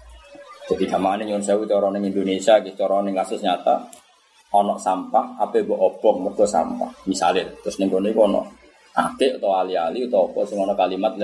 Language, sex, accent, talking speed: Indonesian, male, native, 90 wpm